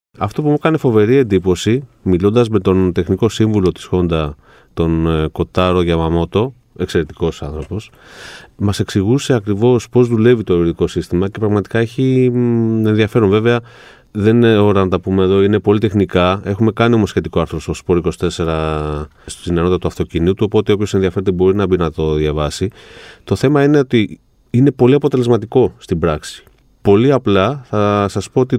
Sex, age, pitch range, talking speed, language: male, 30-49, 90-120 Hz, 160 wpm, Greek